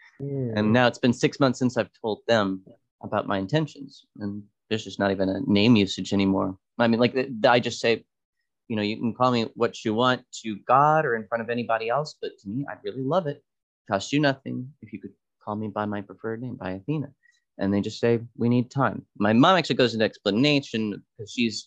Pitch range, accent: 100-135 Hz, American